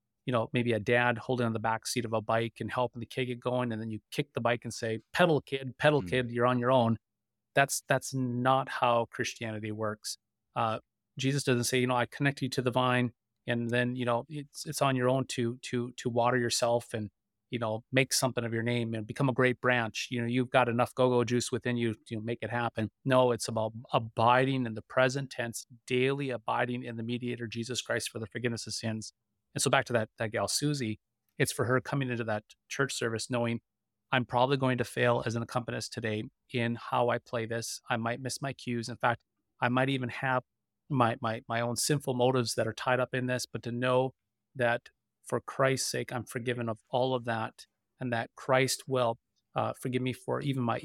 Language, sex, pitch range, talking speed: English, male, 115-130 Hz, 225 wpm